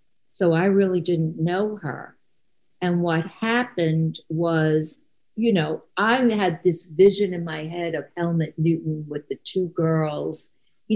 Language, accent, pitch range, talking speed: English, American, 160-200 Hz, 150 wpm